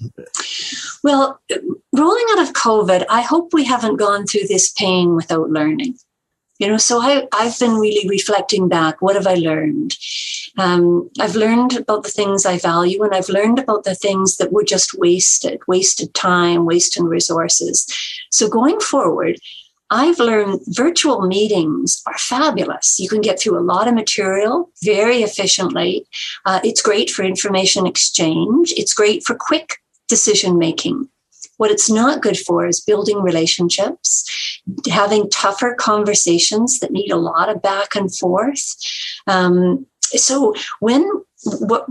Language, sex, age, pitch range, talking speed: English, female, 50-69, 185-240 Hz, 145 wpm